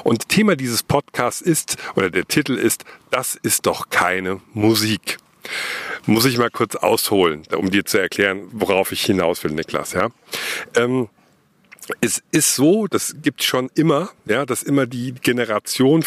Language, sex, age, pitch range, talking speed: German, male, 50-69, 110-160 Hz, 155 wpm